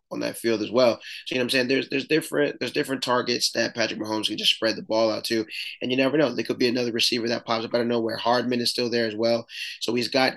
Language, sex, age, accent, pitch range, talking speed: English, male, 20-39, American, 110-120 Hz, 285 wpm